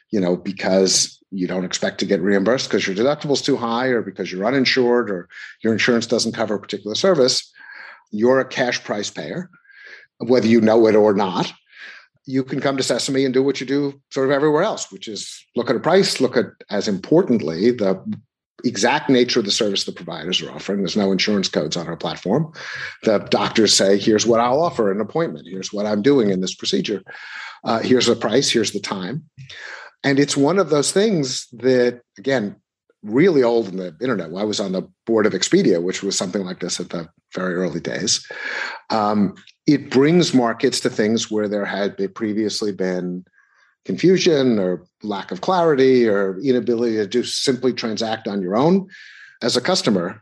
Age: 50-69